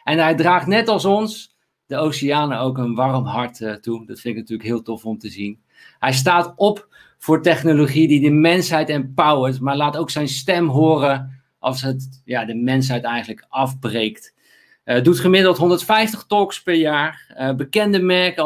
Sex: male